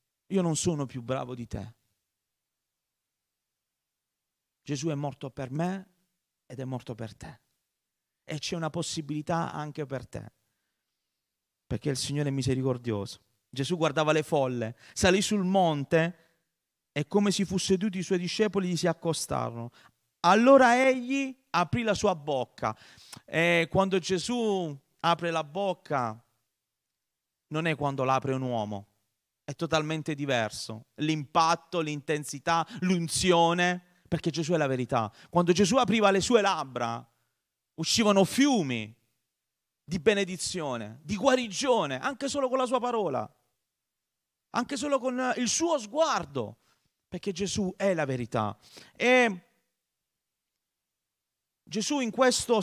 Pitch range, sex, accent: 130-195 Hz, male, native